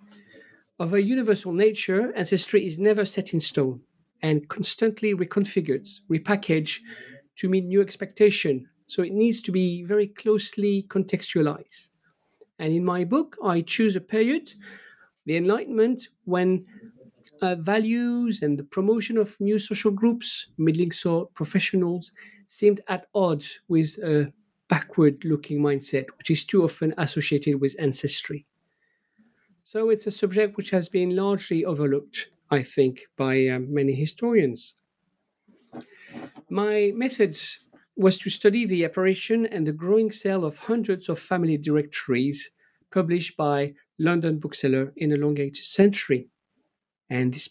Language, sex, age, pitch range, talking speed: English, male, 50-69, 155-210 Hz, 135 wpm